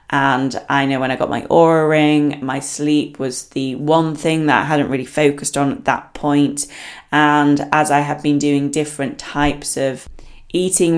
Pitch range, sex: 140-160 Hz, female